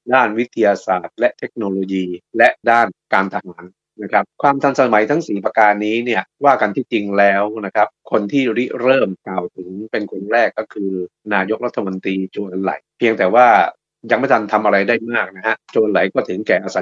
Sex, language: male, Thai